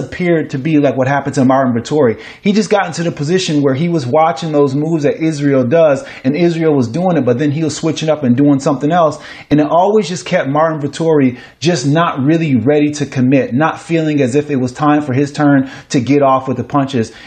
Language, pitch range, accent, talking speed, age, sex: English, 135-170 Hz, American, 235 wpm, 30-49, male